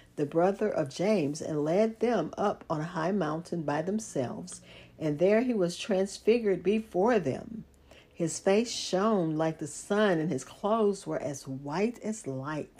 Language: English